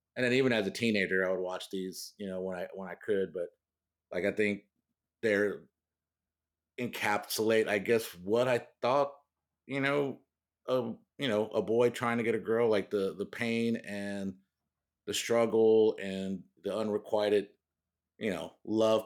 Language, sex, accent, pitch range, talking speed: English, male, American, 95-115 Hz, 165 wpm